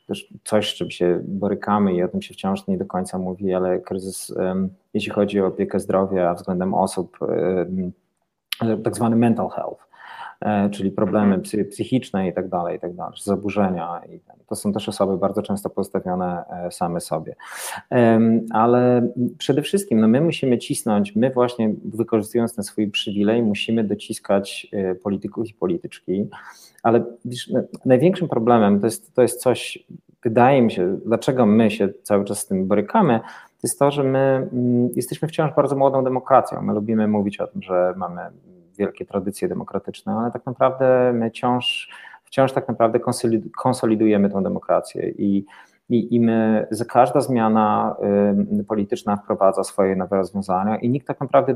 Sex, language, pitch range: male, Polish, 100-125 Hz